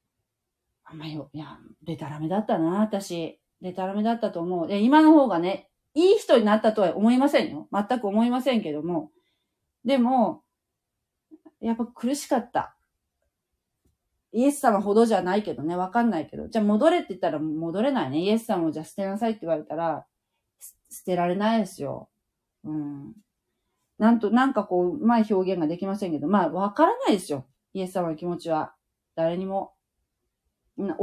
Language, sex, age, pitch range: Japanese, female, 40-59, 180-250 Hz